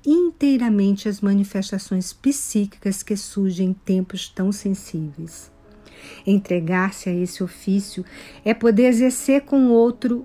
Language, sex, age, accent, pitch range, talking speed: Portuguese, female, 50-69, Brazilian, 185-235 Hz, 115 wpm